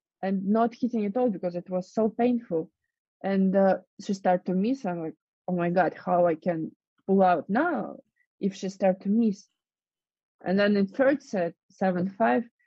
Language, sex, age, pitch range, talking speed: English, female, 20-39, 175-205 Hz, 185 wpm